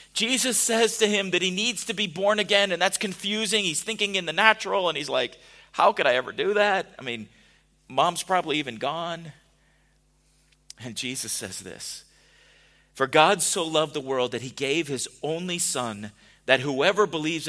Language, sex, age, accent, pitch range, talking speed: English, male, 40-59, American, 140-230 Hz, 180 wpm